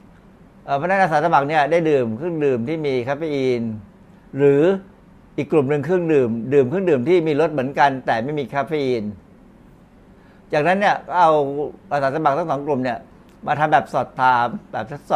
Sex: male